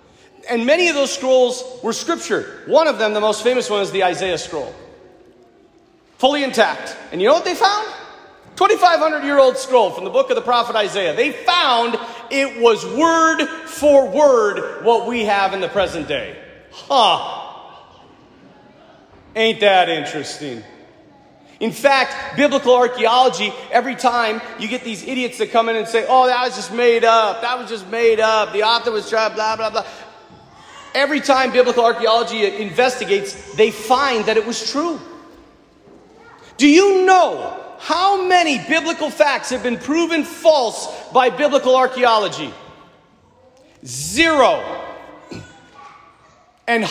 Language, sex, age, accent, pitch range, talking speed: English, male, 40-59, American, 225-320 Hz, 145 wpm